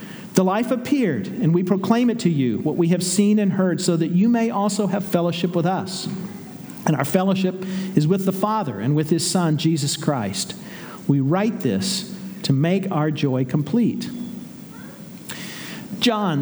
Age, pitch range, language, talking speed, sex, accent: 50-69, 175-215 Hz, English, 170 wpm, male, American